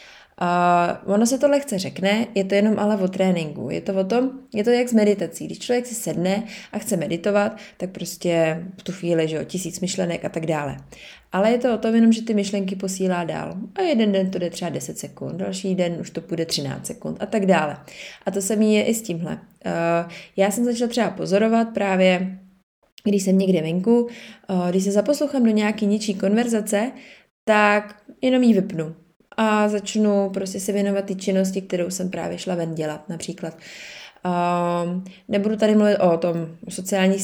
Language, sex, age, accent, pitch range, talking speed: Czech, female, 20-39, native, 175-210 Hz, 195 wpm